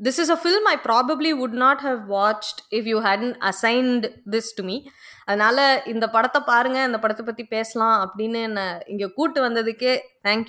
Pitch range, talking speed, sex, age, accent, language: 220-295 Hz, 175 wpm, female, 20-39, native, Tamil